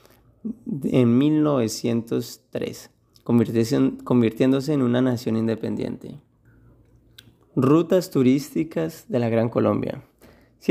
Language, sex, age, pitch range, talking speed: Portuguese, male, 30-49, 115-130 Hz, 80 wpm